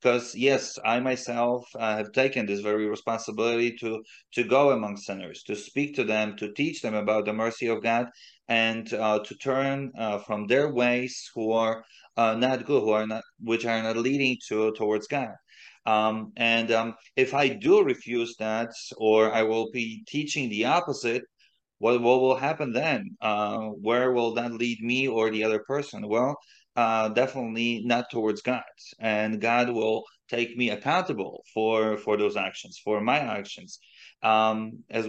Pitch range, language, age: 110-130 Hz, English, 30-49